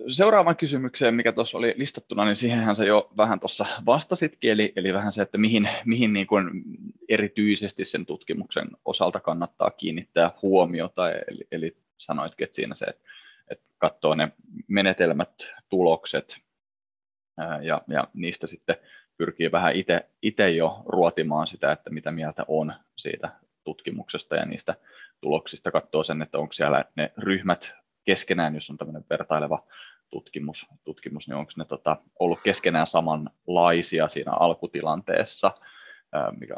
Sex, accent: male, native